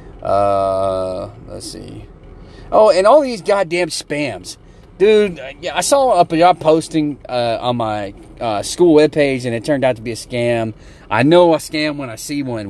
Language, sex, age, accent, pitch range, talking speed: English, male, 30-49, American, 120-180 Hz, 185 wpm